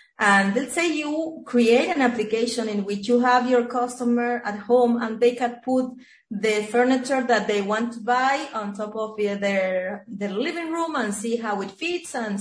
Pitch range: 205-250 Hz